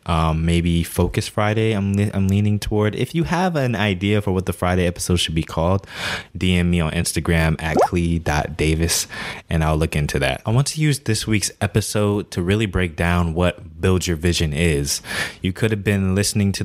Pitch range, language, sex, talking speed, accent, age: 85-110 Hz, English, male, 200 wpm, American, 20-39